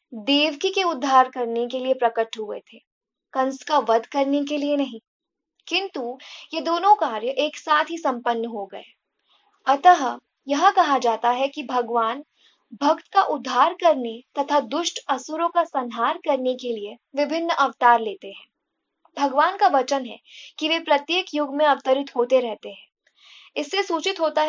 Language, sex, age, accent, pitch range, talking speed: Hindi, female, 20-39, native, 255-325 Hz, 160 wpm